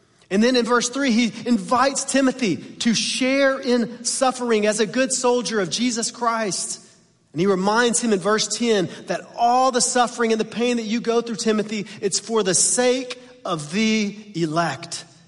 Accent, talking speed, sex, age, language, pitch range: American, 175 wpm, male, 30-49, English, 170-230 Hz